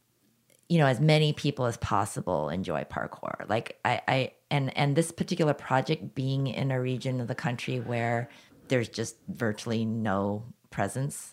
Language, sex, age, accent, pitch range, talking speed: English, female, 30-49, American, 110-135 Hz, 160 wpm